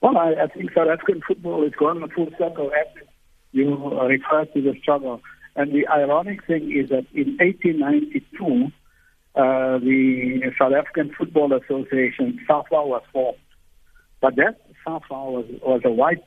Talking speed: 150 wpm